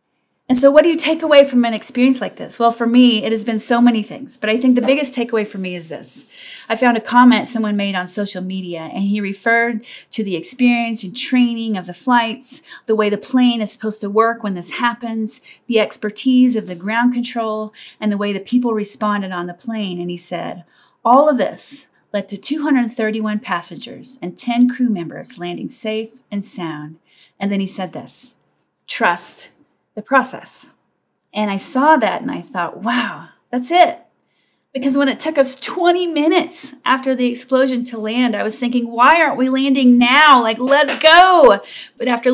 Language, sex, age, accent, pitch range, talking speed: English, female, 30-49, American, 210-265 Hz, 195 wpm